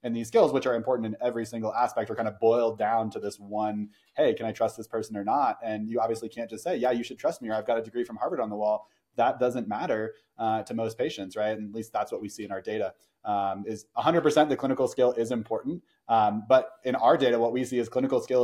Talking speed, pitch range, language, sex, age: 275 wpm, 110-125 Hz, English, male, 20-39